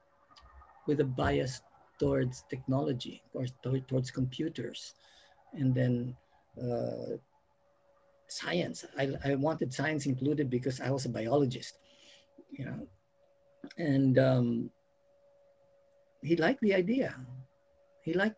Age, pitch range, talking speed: 50-69, 140-210 Hz, 110 wpm